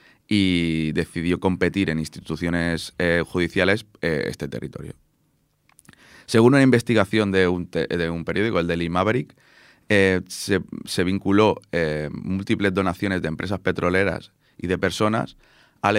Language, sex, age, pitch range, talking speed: Spanish, male, 30-49, 85-100 Hz, 130 wpm